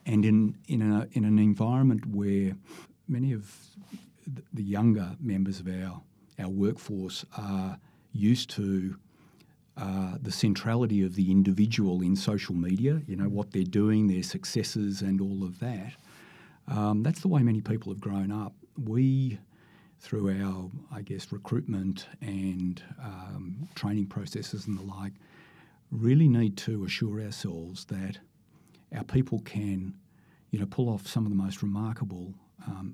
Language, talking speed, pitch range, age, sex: English, 145 wpm, 95-115 Hz, 50-69, male